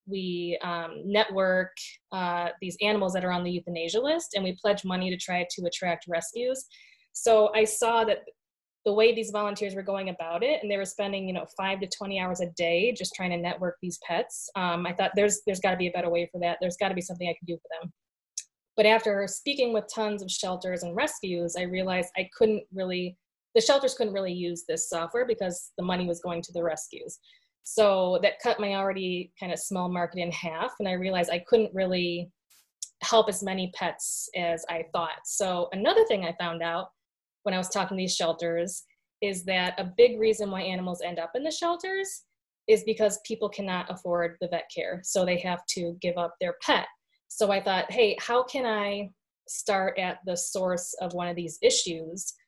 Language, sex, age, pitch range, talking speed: English, female, 20-39, 175-210 Hz, 210 wpm